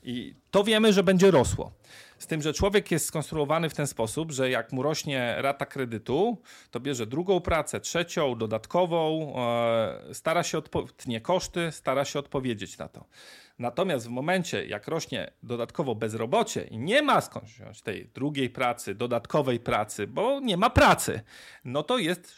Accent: native